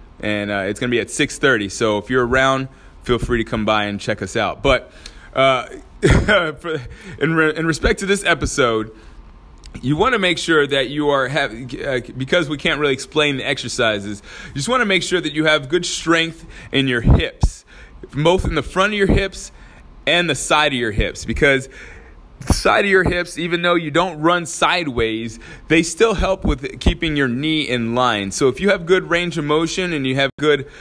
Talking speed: 210 wpm